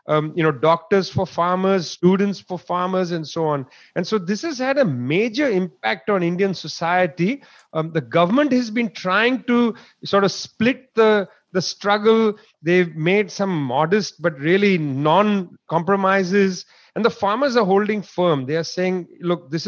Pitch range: 170-210 Hz